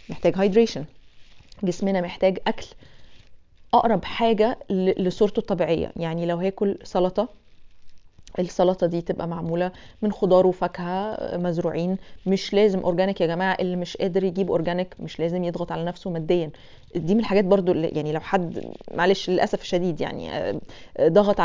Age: 20-39